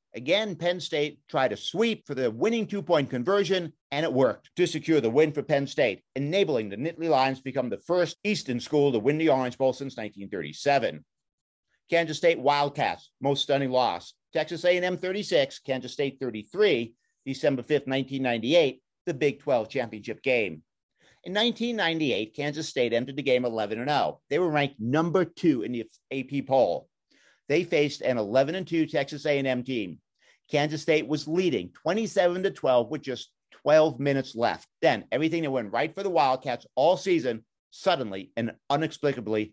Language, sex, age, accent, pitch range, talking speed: English, male, 50-69, American, 125-160 Hz, 160 wpm